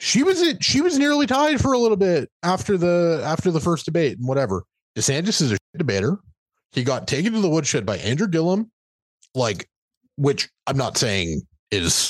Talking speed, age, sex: 195 wpm, 30-49, male